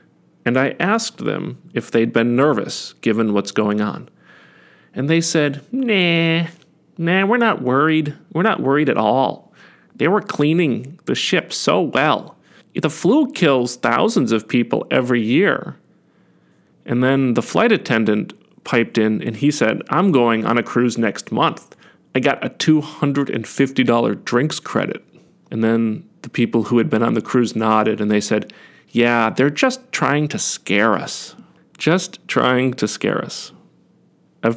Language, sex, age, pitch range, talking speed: English, male, 40-59, 115-165 Hz, 155 wpm